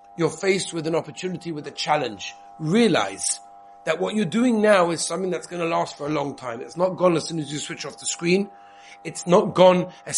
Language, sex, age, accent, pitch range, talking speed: English, male, 30-49, British, 150-200 Hz, 230 wpm